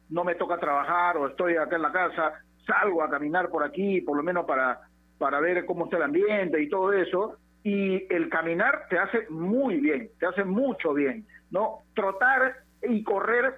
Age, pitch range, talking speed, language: 50-69, 165-225 Hz, 190 wpm, Spanish